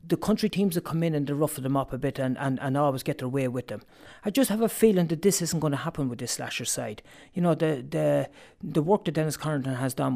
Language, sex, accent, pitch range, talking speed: English, male, Irish, 135-165 Hz, 285 wpm